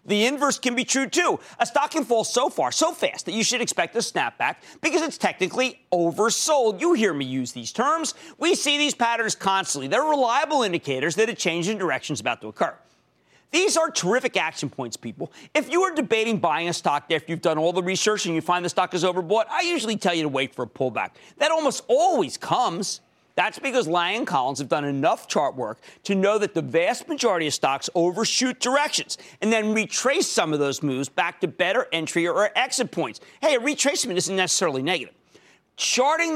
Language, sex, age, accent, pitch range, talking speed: English, male, 40-59, American, 170-275 Hz, 210 wpm